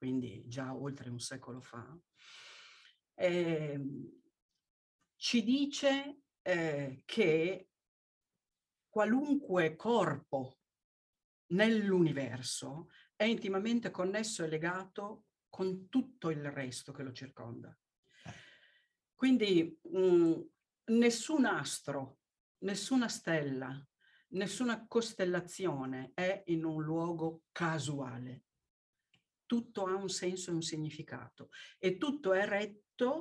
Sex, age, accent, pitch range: female, 50-69, native, 140-200 Hz